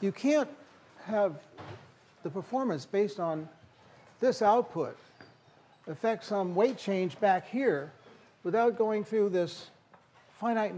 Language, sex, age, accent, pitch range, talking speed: English, male, 60-79, American, 155-210 Hz, 110 wpm